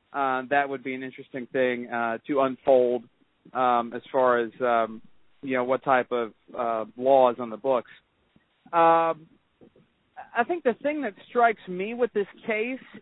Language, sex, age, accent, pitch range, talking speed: English, male, 50-69, American, 130-190 Hz, 165 wpm